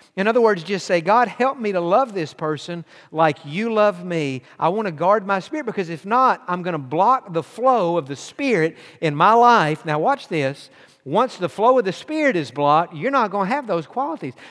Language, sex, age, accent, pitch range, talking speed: English, male, 50-69, American, 155-210 Hz, 230 wpm